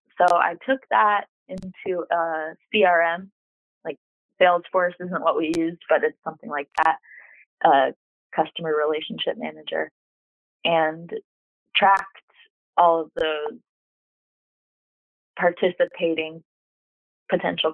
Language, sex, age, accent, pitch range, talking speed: English, female, 20-39, American, 165-210 Hz, 100 wpm